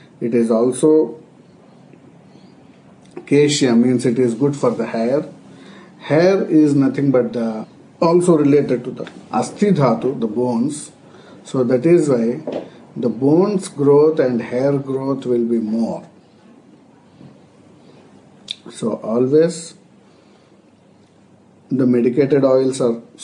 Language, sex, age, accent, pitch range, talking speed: English, male, 50-69, Indian, 120-155 Hz, 110 wpm